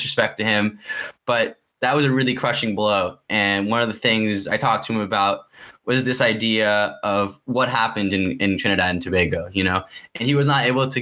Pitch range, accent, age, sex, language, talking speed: 110-135 Hz, American, 10-29, male, English, 210 wpm